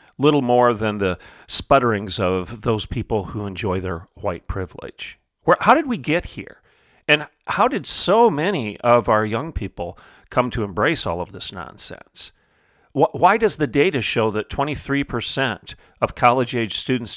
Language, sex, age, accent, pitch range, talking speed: English, male, 40-59, American, 100-140 Hz, 160 wpm